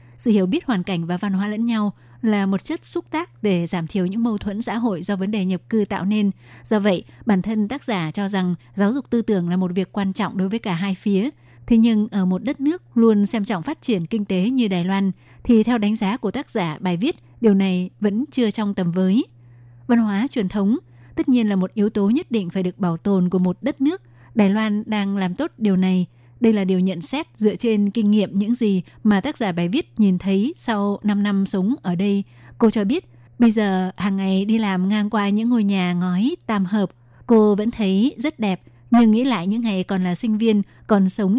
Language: Vietnamese